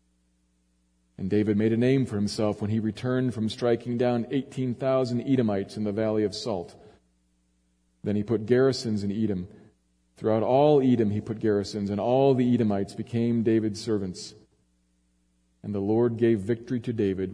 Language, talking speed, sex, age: English, 160 wpm, male, 40-59